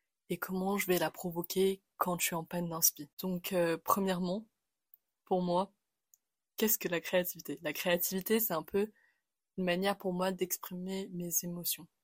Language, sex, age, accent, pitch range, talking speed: French, female, 20-39, French, 175-200 Hz, 165 wpm